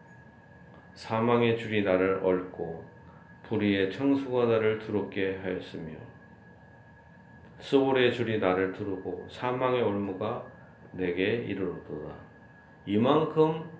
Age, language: 40-59, Korean